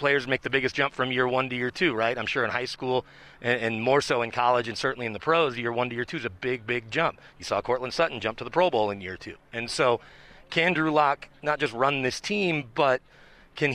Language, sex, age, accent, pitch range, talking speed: English, male, 40-59, American, 115-150 Hz, 270 wpm